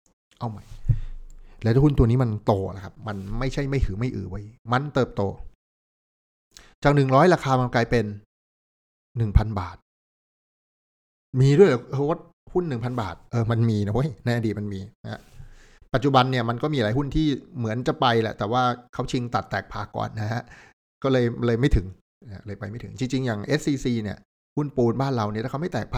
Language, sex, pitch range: Thai, male, 100-135 Hz